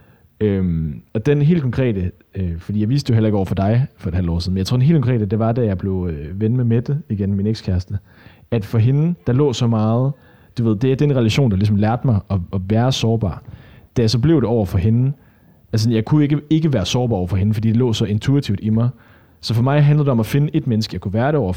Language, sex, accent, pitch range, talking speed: Danish, male, native, 100-125 Hz, 275 wpm